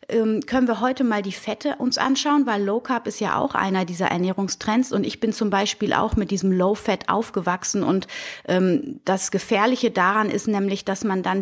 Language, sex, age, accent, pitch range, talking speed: German, female, 30-49, German, 190-225 Hz, 190 wpm